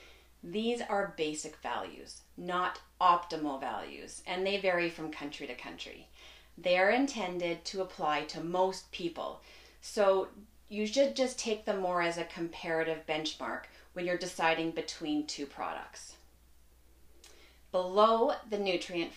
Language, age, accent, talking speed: English, 30-49, American, 130 wpm